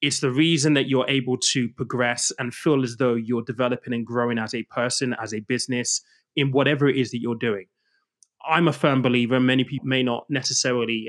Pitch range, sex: 120-140 Hz, male